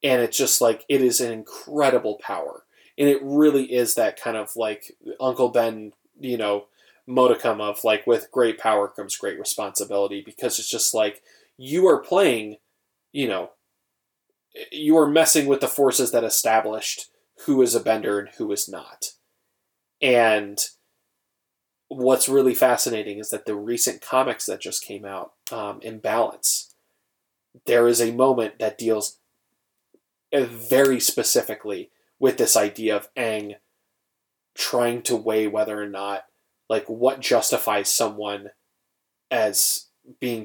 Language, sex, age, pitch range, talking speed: English, male, 20-39, 110-140 Hz, 140 wpm